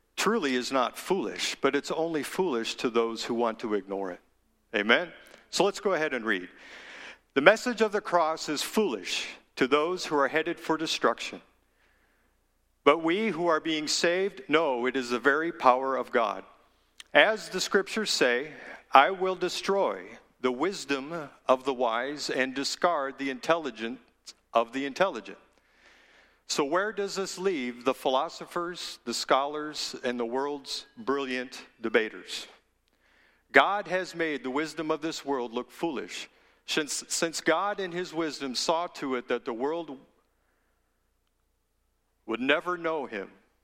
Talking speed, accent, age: 150 wpm, American, 50-69